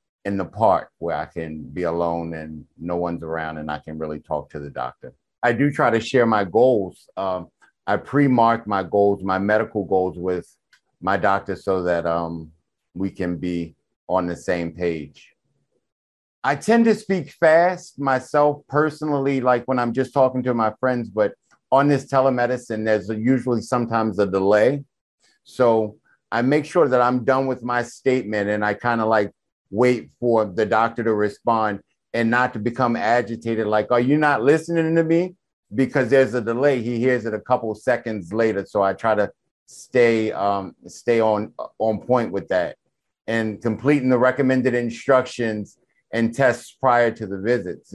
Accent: American